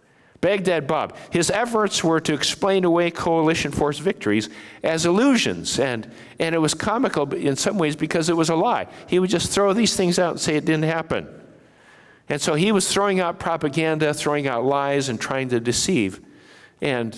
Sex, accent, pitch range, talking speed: male, American, 130-175 Hz, 185 wpm